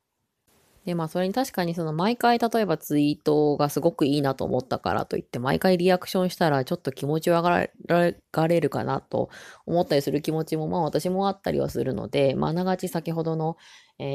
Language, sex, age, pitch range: Japanese, female, 20-39, 130-170 Hz